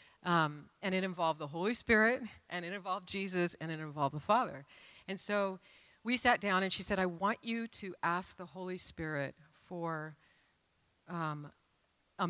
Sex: female